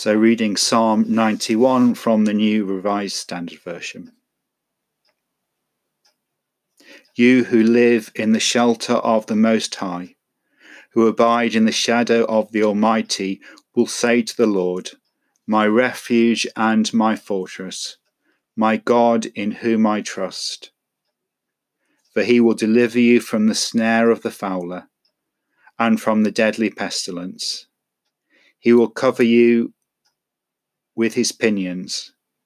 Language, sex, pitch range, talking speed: English, male, 105-115 Hz, 125 wpm